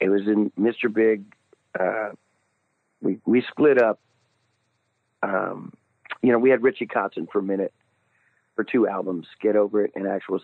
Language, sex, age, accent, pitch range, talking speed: English, male, 50-69, American, 110-130 Hz, 160 wpm